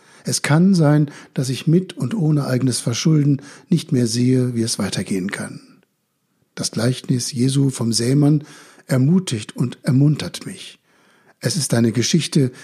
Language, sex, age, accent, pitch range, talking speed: German, male, 60-79, German, 125-155 Hz, 140 wpm